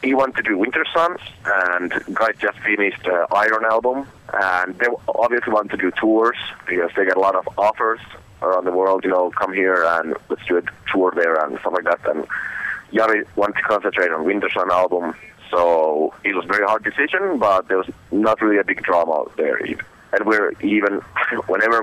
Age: 30-49